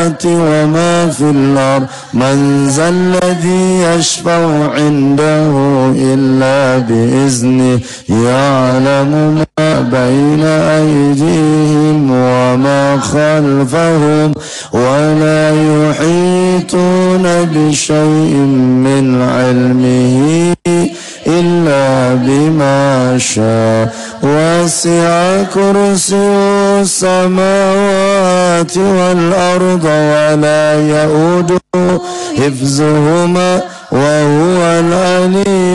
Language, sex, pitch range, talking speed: Indonesian, male, 140-175 Hz, 55 wpm